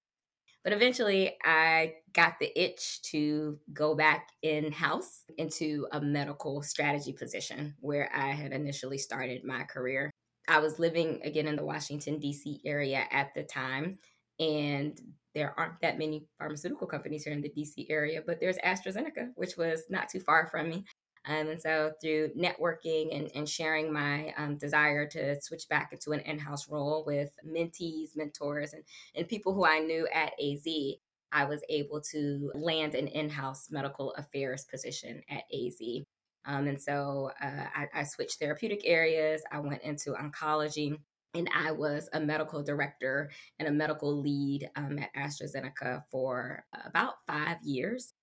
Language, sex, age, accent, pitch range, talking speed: English, female, 20-39, American, 145-155 Hz, 160 wpm